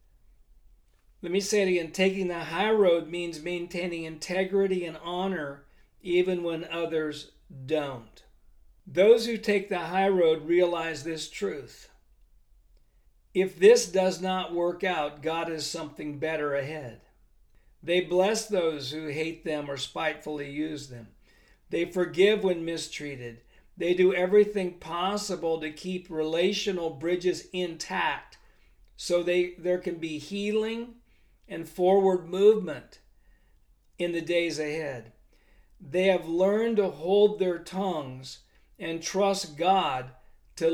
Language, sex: English, male